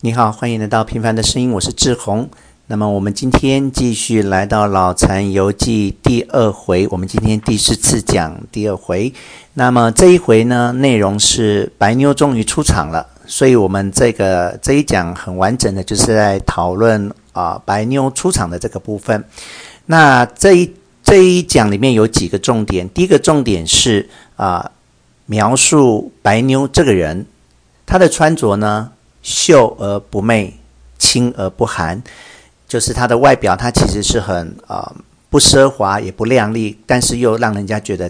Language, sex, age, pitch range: Chinese, male, 50-69, 100-125 Hz